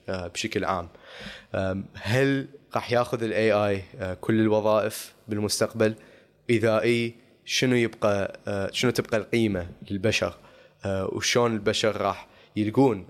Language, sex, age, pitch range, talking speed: Arabic, male, 20-39, 100-115 Hz, 90 wpm